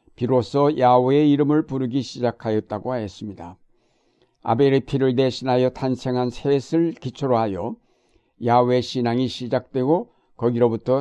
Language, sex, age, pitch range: Korean, male, 60-79, 120-145 Hz